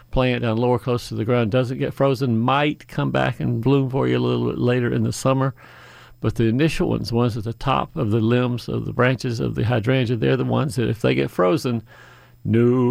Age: 50-69